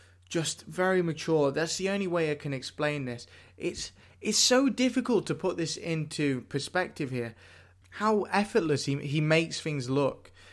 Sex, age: male, 20-39